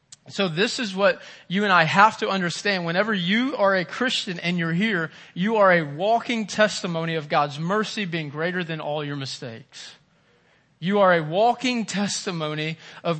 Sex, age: male, 20-39